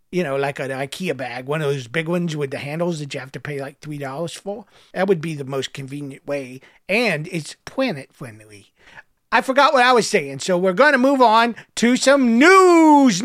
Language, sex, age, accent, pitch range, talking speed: English, male, 50-69, American, 165-245 Hz, 215 wpm